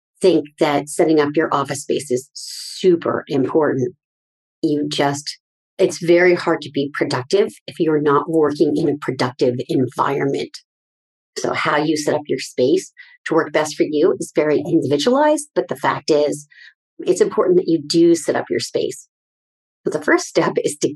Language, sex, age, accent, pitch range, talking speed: English, female, 40-59, American, 150-220 Hz, 170 wpm